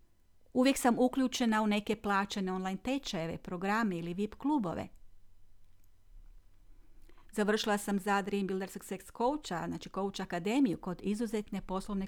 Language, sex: Croatian, female